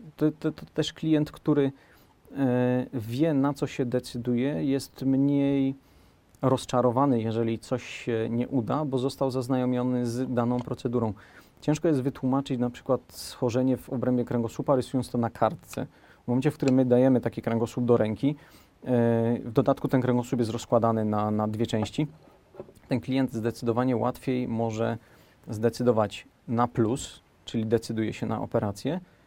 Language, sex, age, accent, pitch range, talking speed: English, male, 40-59, Polish, 115-135 Hz, 145 wpm